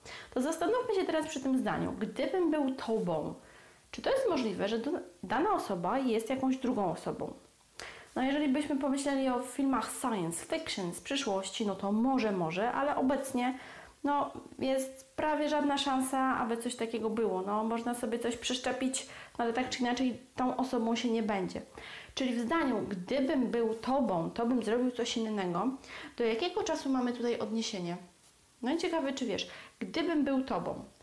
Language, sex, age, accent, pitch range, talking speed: Polish, female, 30-49, native, 225-285 Hz, 165 wpm